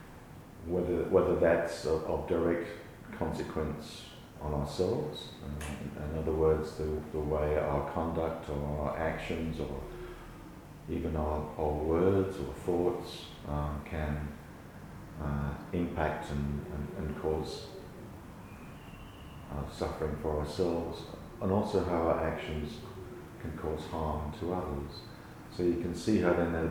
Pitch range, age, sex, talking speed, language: 75-80 Hz, 40-59, male, 125 wpm, English